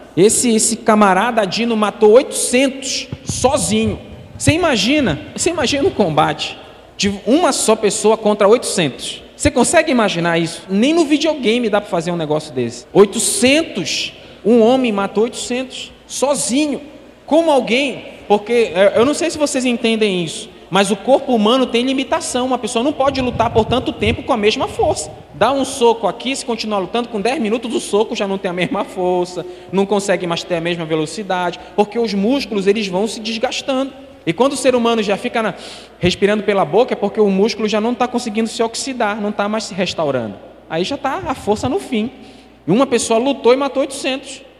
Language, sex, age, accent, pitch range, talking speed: Portuguese, male, 20-39, Brazilian, 200-260 Hz, 185 wpm